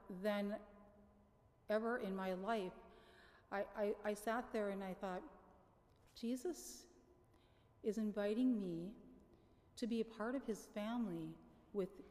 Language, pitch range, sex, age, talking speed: English, 190-225 Hz, female, 40-59, 125 wpm